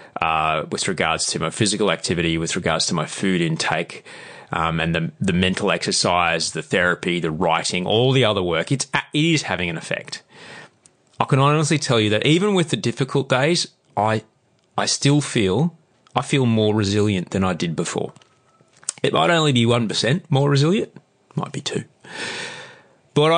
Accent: Australian